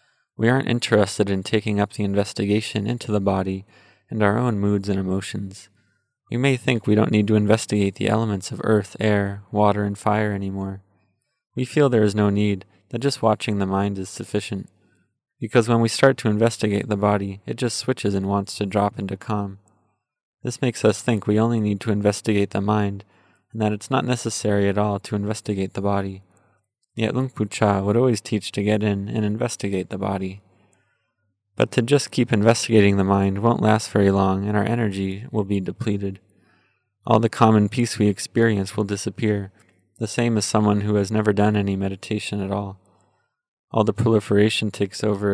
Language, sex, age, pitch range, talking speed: English, male, 20-39, 100-110 Hz, 185 wpm